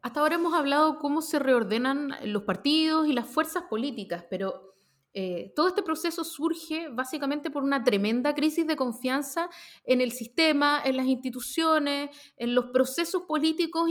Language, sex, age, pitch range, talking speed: Spanish, female, 30-49, 220-310 Hz, 155 wpm